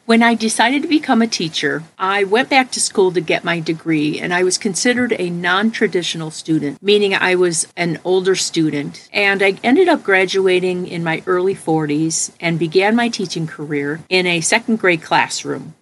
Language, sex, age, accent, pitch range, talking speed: English, female, 50-69, American, 165-210 Hz, 180 wpm